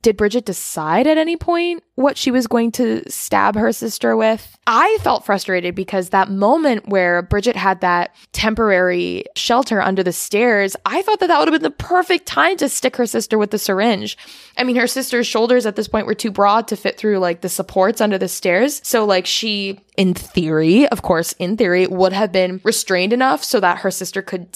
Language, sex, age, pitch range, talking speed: English, female, 20-39, 185-240 Hz, 210 wpm